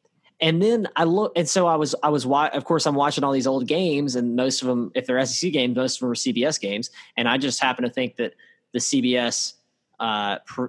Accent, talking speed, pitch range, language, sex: American, 235 wpm, 125-155 Hz, English, male